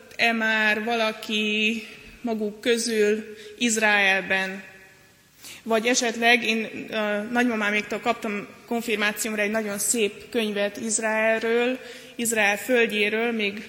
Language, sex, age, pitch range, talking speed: Hungarian, female, 20-39, 215-245 Hz, 90 wpm